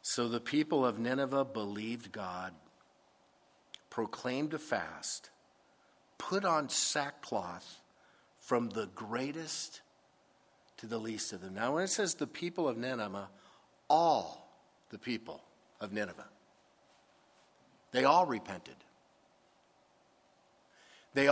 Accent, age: American, 50-69